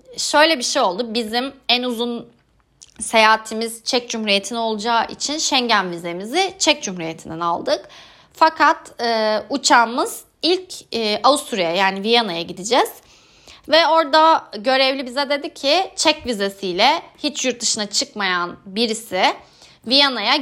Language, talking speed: Turkish, 120 wpm